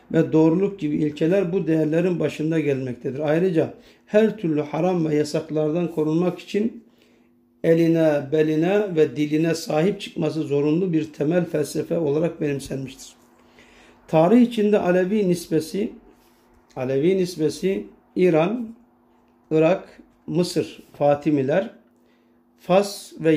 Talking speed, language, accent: 100 wpm, Turkish, native